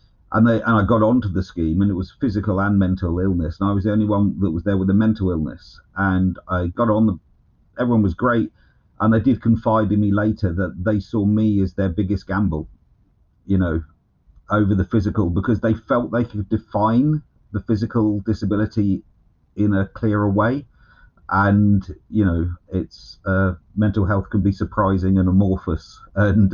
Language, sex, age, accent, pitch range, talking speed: English, male, 50-69, British, 95-110 Hz, 190 wpm